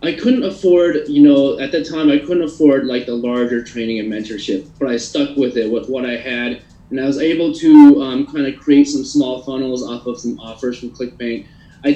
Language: English